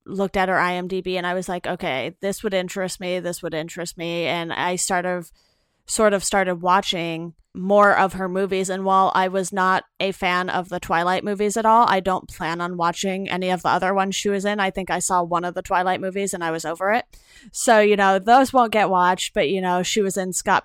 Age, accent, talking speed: 20-39, American, 240 wpm